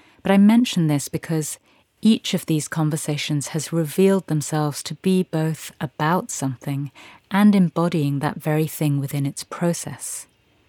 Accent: British